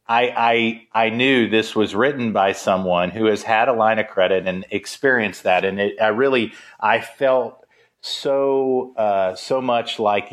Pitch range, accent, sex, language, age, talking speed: 100-120 Hz, American, male, English, 40-59, 175 wpm